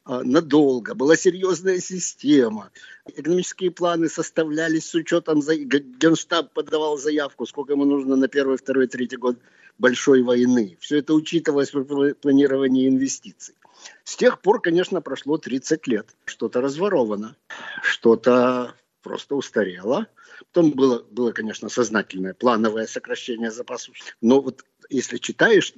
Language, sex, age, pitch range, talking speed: Russian, male, 50-69, 125-160 Hz, 120 wpm